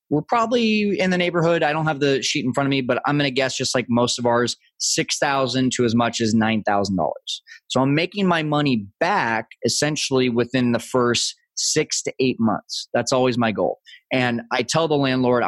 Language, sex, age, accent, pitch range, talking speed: English, male, 20-39, American, 115-145 Hz, 215 wpm